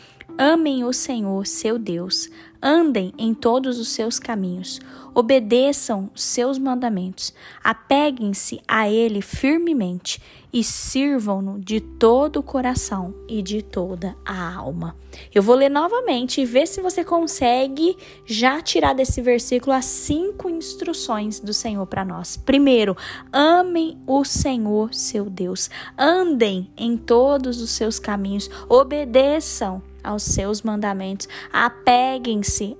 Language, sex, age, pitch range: Portuguese, female, 10-29, 195-265 Hz